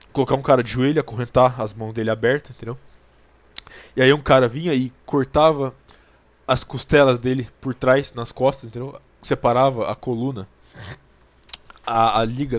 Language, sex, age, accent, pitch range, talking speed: Portuguese, male, 20-39, Brazilian, 115-140 Hz, 155 wpm